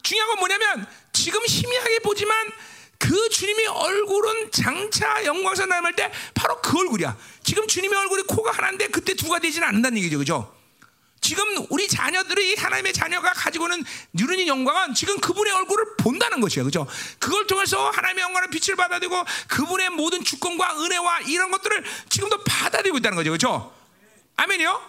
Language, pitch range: Korean, 345-435 Hz